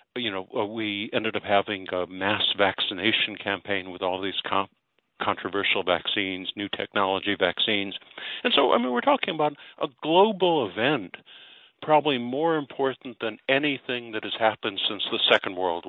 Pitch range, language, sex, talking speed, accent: 100-150 Hz, English, male, 155 wpm, American